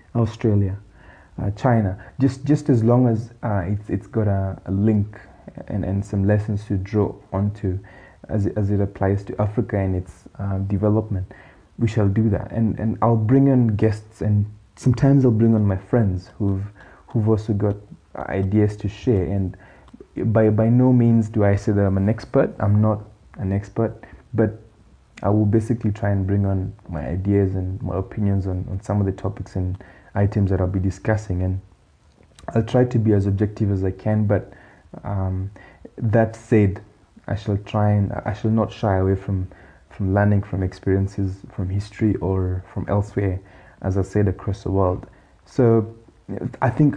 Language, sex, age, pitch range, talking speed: English, male, 20-39, 95-110 Hz, 180 wpm